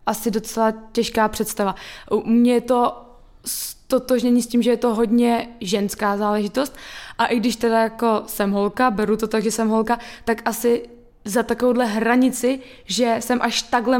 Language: Czech